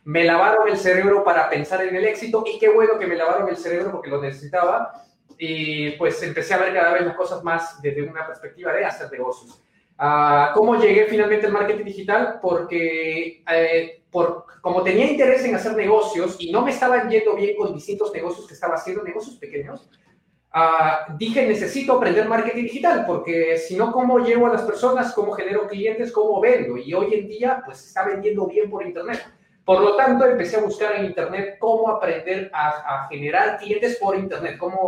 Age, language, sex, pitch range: 30-49, Spanish, male, 170-225 Hz